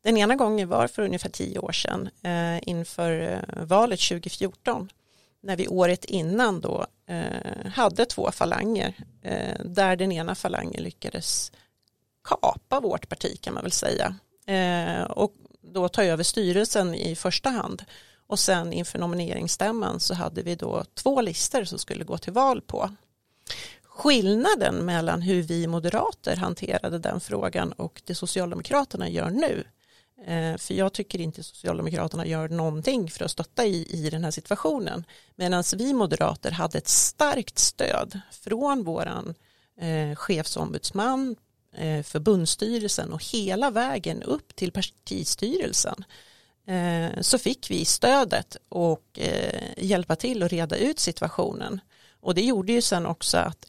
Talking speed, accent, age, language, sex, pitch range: 140 wpm, native, 40-59, Swedish, female, 170-210 Hz